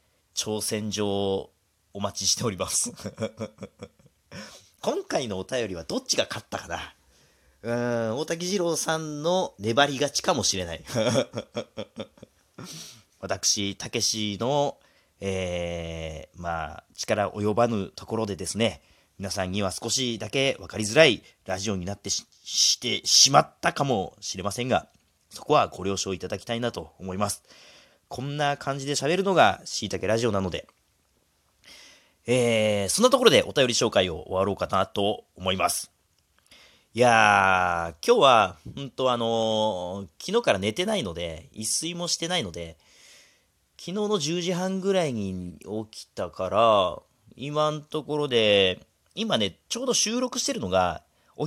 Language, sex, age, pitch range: Japanese, male, 40-59, 95-145 Hz